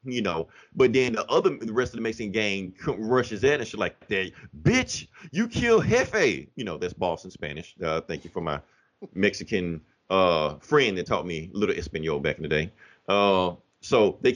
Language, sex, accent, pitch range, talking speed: English, male, American, 105-145 Hz, 200 wpm